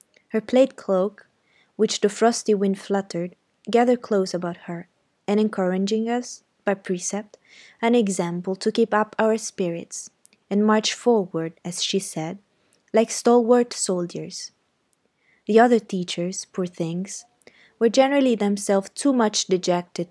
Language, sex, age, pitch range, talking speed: Italian, female, 20-39, 185-225 Hz, 130 wpm